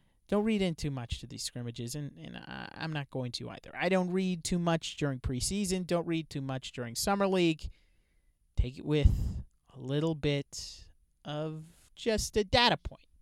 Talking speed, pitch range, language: 185 wpm, 135-185 Hz, English